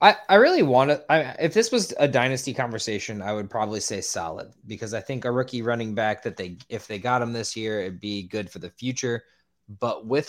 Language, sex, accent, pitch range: English, male, American, 105-120 Hz